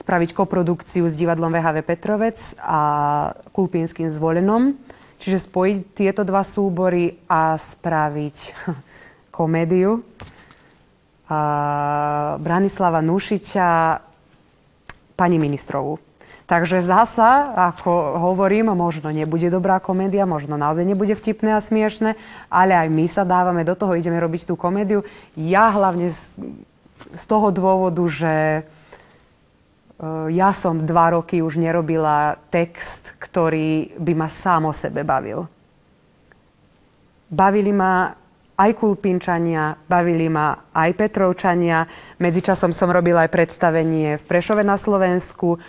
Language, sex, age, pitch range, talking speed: Slovak, female, 20-39, 165-195 Hz, 110 wpm